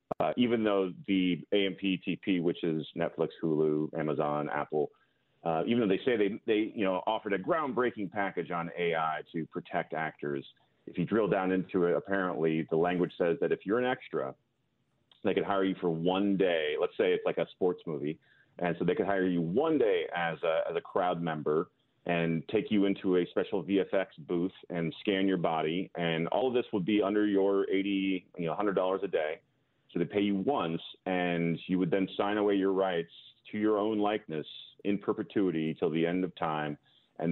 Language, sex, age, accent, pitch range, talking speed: English, male, 30-49, American, 85-105 Hz, 200 wpm